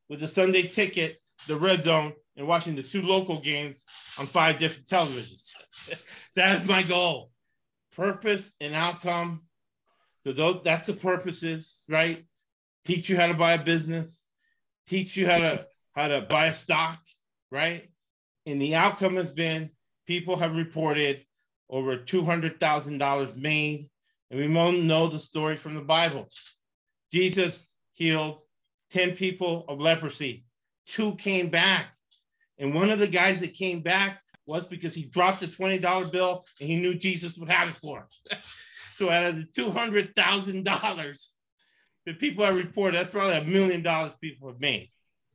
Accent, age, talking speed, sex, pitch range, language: American, 30-49, 155 wpm, male, 145-180 Hz, English